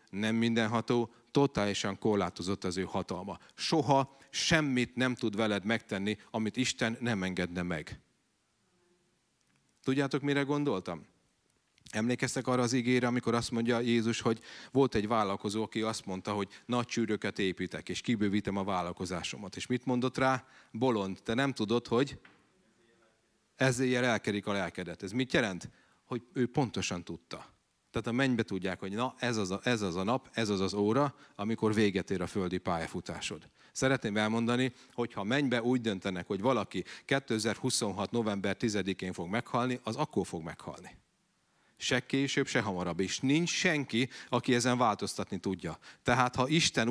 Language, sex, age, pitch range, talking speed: Hungarian, male, 40-59, 105-135 Hz, 150 wpm